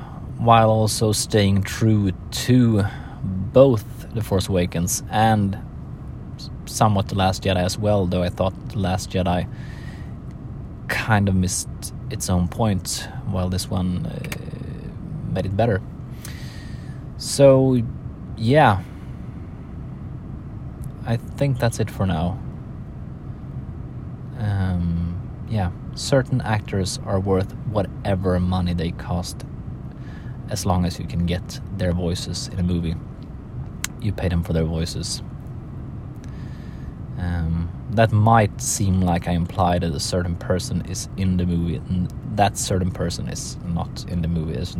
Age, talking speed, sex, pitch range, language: 20-39, 125 wpm, male, 90-115 Hz, Swedish